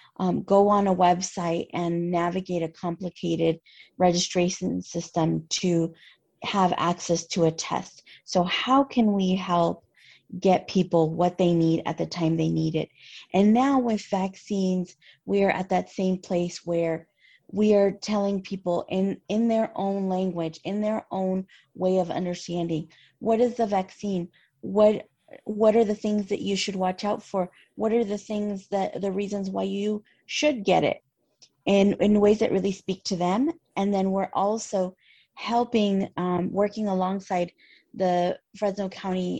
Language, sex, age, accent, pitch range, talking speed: English, female, 30-49, American, 175-205 Hz, 160 wpm